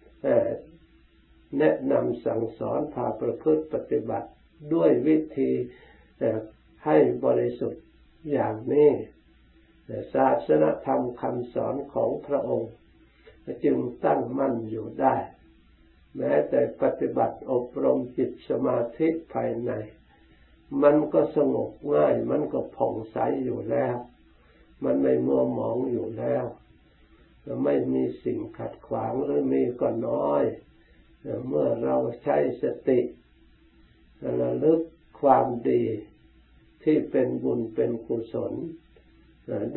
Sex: male